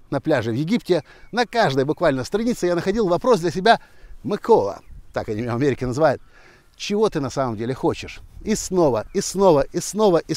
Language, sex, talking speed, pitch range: Russian, male, 180 wpm, 125-185 Hz